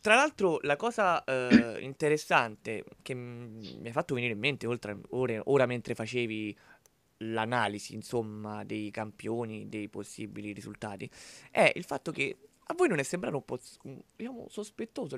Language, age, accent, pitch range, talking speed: Italian, 20-39, native, 110-135 Hz, 155 wpm